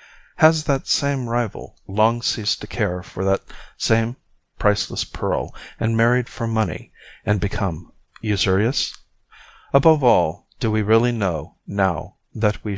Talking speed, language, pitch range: 135 wpm, English, 95-115 Hz